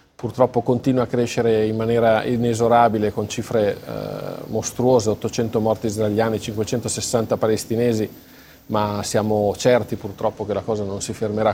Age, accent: 40-59, native